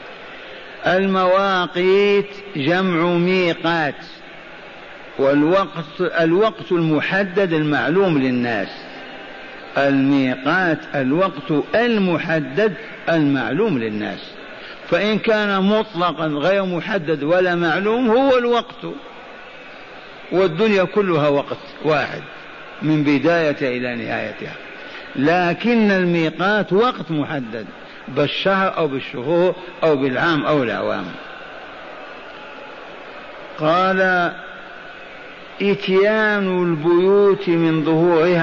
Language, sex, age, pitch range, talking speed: Arabic, male, 50-69, 160-195 Hz, 70 wpm